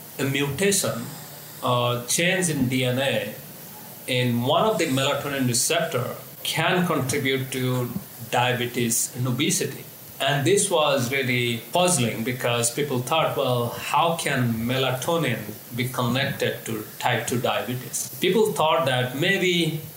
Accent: Indian